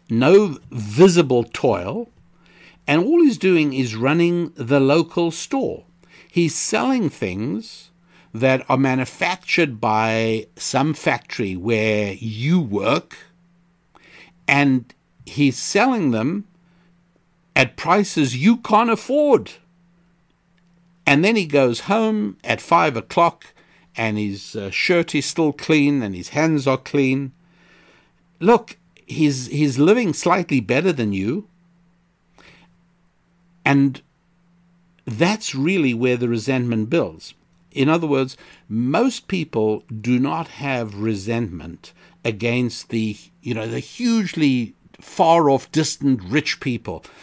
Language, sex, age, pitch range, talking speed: English, male, 60-79, 115-175 Hz, 110 wpm